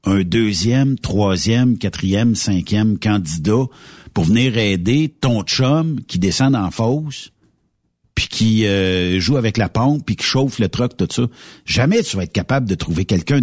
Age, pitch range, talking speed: 60-79, 90-130 Hz, 165 wpm